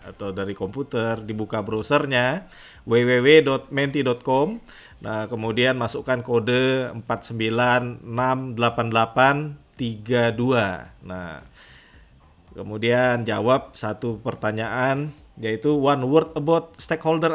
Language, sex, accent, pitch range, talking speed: English, male, Indonesian, 110-140 Hz, 75 wpm